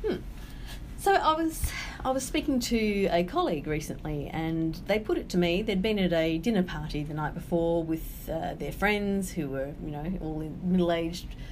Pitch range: 160-210 Hz